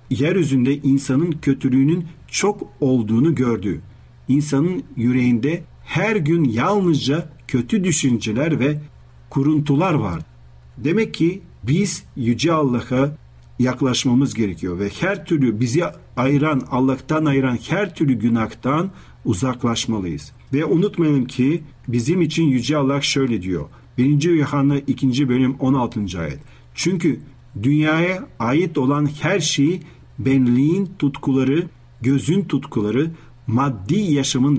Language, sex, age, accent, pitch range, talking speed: Turkish, male, 50-69, native, 120-155 Hz, 105 wpm